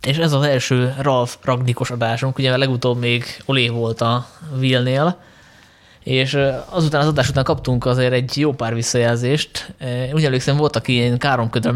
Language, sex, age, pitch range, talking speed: Hungarian, male, 20-39, 120-135 Hz, 160 wpm